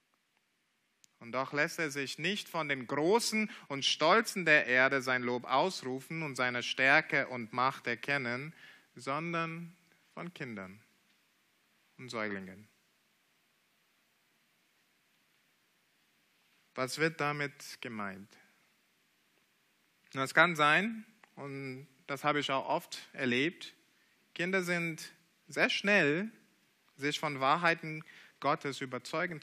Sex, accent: male, German